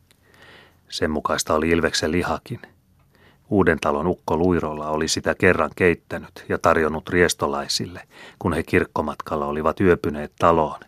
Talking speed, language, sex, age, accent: 120 wpm, Finnish, male, 30-49, native